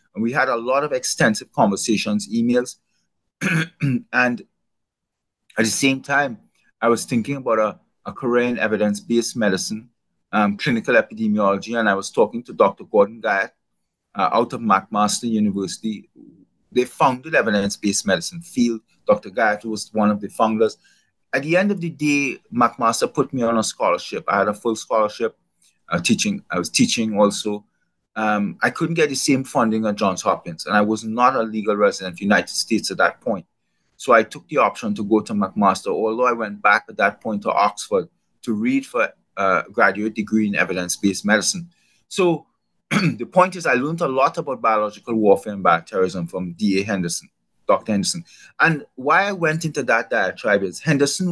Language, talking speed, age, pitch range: English, 175 wpm, 30-49, 105-150 Hz